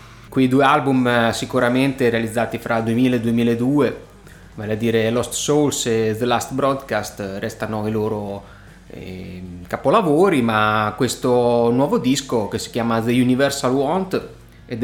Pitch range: 110-135 Hz